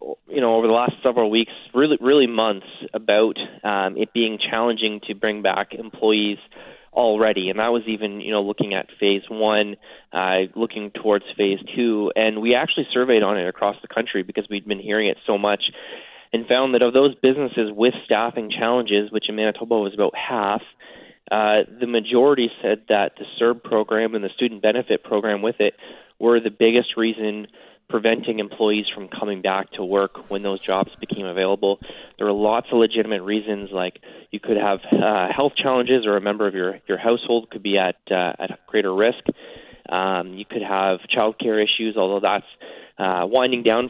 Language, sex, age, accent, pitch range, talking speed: English, male, 20-39, American, 100-115 Hz, 185 wpm